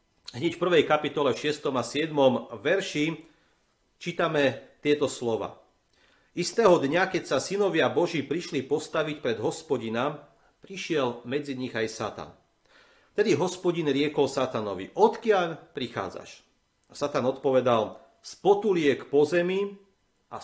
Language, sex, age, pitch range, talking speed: Slovak, male, 40-59, 125-170 Hz, 115 wpm